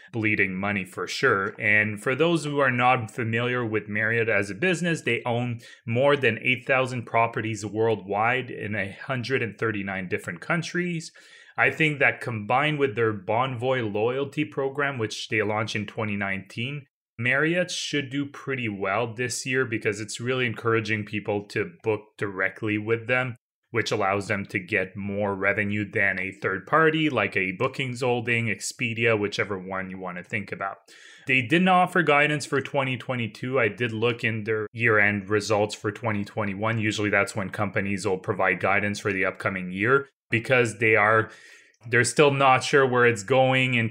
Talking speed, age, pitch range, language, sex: 160 wpm, 30-49, 105-130 Hz, English, male